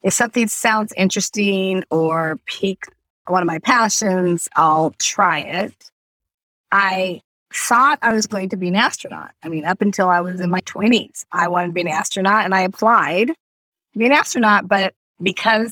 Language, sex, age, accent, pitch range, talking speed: English, female, 30-49, American, 165-205 Hz, 175 wpm